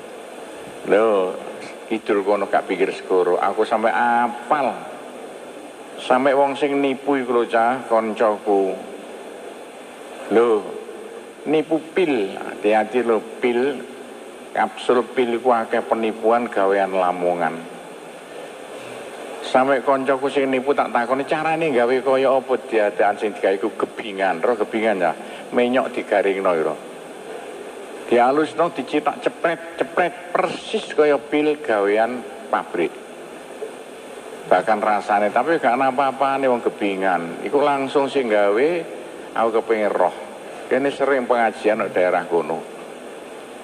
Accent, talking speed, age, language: native, 105 wpm, 50-69, Indonesian